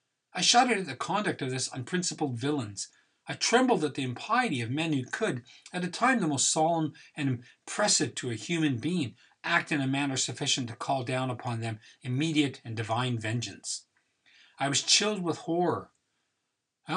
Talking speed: 175 wpm